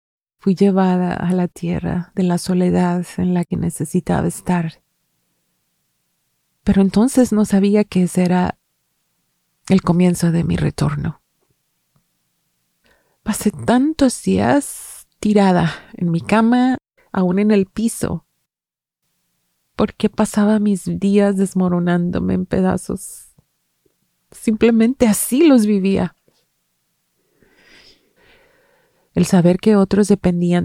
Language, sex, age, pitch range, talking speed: English, female, 30-49, 175-210 Hz, 100 wpm